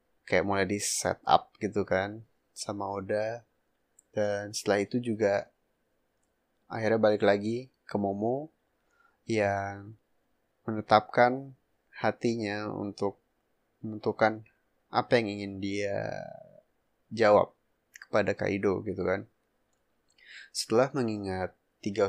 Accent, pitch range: native, 100-115 Hz